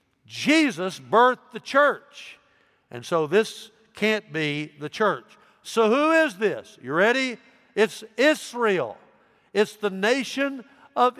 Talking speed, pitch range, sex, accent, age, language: 125 wpm, 170-240 Hz, male, American, 60-79, English